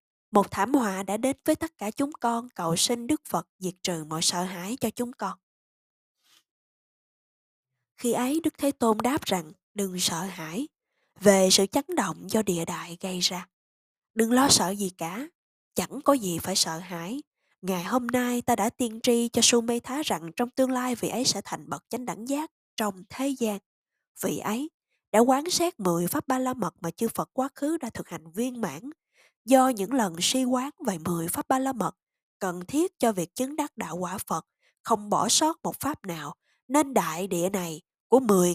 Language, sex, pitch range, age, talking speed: Vietnamese, female, 180-260 Hz, 20-39, 205 wpm